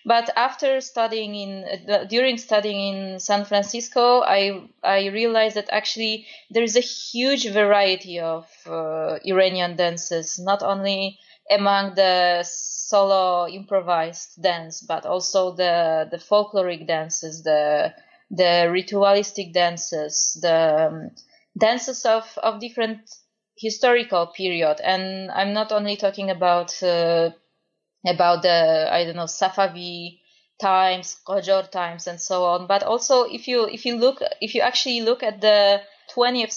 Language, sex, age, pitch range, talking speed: English, female, 20-39, 180-225 Hz, 135 wpm